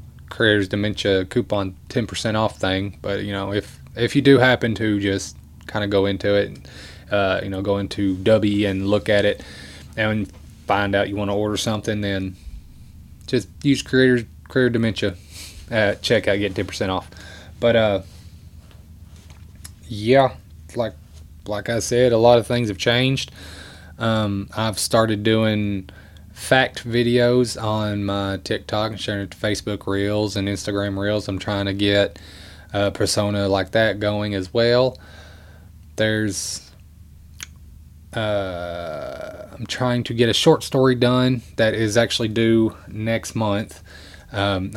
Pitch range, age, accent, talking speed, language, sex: 90-110 Hz, 20-39, American, 145 wpm, English, male